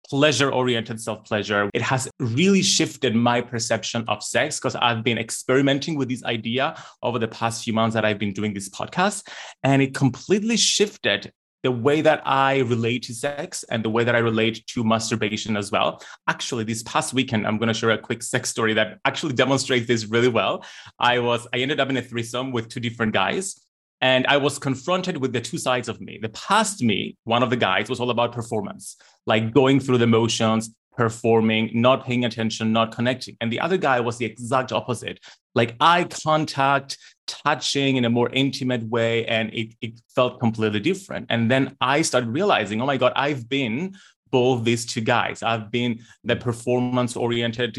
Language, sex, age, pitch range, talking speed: English, male, 30-49, 115-130 Hz, 190 wpm